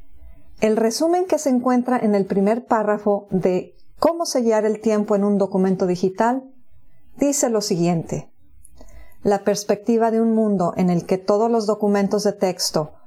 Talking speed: 155 wpm